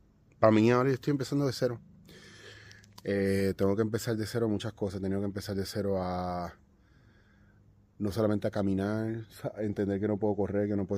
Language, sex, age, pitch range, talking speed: Spanish, male, 20-39, 90-105 Hz, 190 wpm